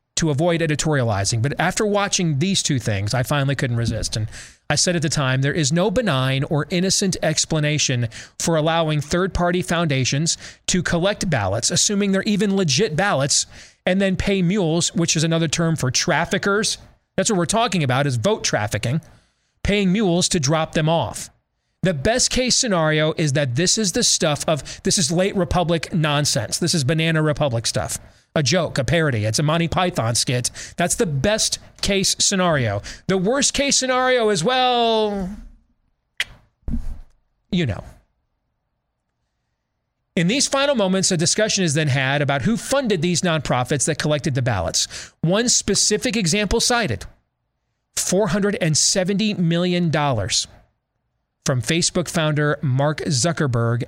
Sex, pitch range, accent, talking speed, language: male, 135-190 Hz, American, 150 wpm, English